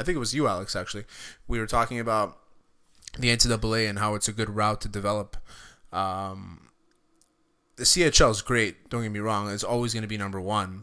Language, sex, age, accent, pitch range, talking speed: English, male, 20-39, American, 105-120 Hz, 205 wpm